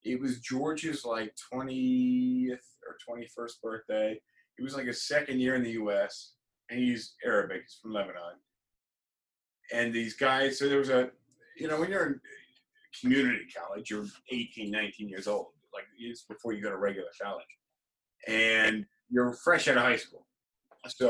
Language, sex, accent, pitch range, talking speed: English, male, American, 105-130 Hz, 165 wpm